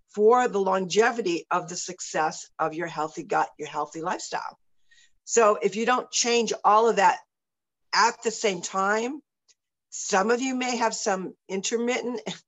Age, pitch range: 50-69, 175-225 Hz